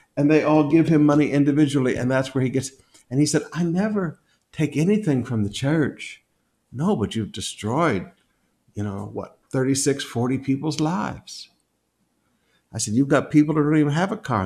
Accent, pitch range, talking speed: American, 125-175 Hz, 185 wpm